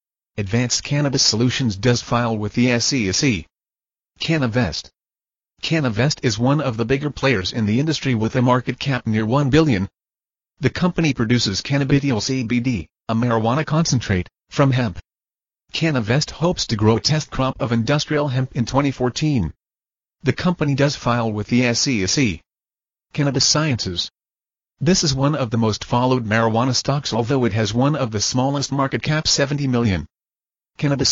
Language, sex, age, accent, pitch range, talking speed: English, male, 40-59, American, 115-145 Hz, 150 wpm